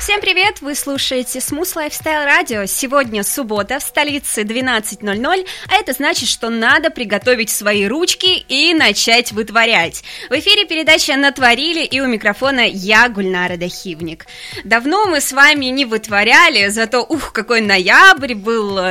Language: Russian